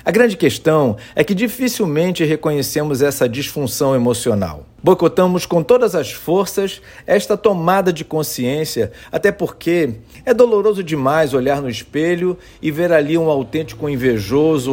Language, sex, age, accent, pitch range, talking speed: Portuguese, male, 50-69, Brazilian, 135-185 Hz, 135 wpm